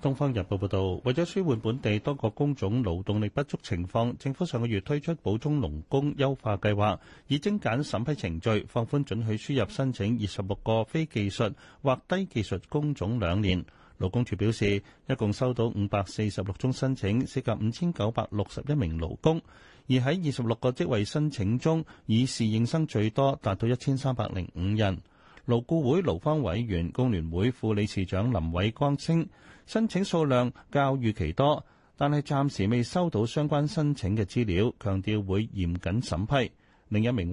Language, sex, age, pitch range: Chinese, male, 30-49, 100-140 Hz